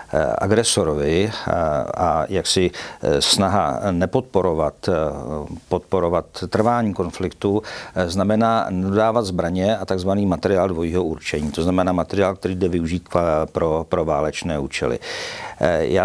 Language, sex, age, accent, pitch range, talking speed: Czech, male, 50-69, native, 90-110 Hz, 100 wpm